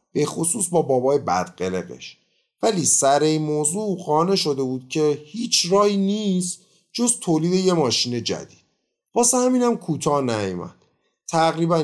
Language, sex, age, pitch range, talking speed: Persian, male, 30-49, 115-180 Hz, 130 wpm